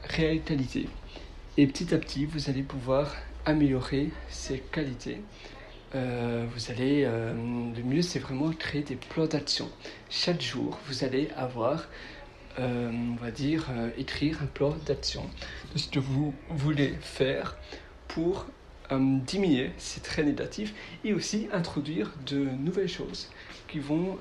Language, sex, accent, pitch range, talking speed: French, male, French, 135-165 Hz, 140 wpm